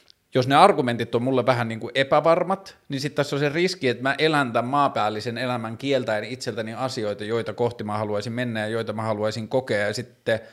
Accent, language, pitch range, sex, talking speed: native, Finnish, 110-140 Hz, male, 205 wpm